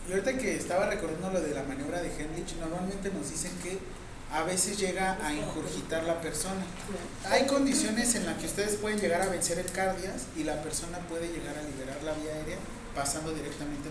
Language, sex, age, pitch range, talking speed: Spanish, male, 30-49, 145-190 Hz, 200 wpm